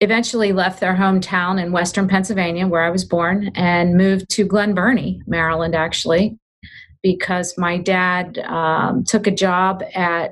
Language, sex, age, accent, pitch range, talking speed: English, female, 40-59, American, 170-195 Hz, 150 wpm